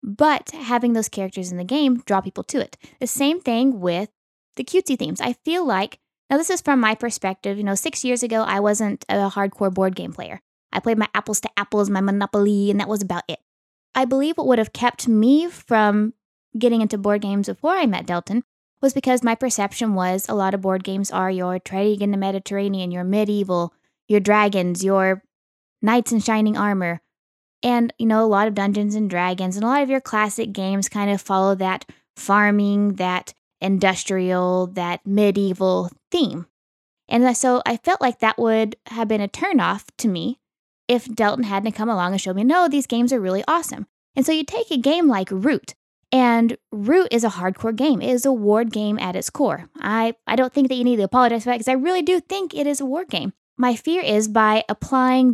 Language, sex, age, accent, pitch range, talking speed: English, female, 10-29, American, 195-255 Hz, 210 wpm